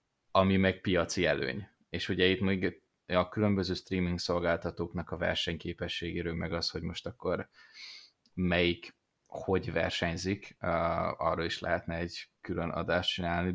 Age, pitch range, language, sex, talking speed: 20-39, 85-100 Hz, Hungarian, male, 130 wpm